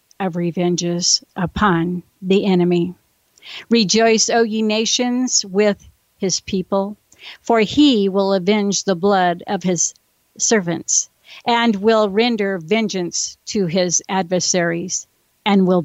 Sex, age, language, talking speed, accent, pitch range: female, 50-69, English, 115 wpm, American, 180-220 Hz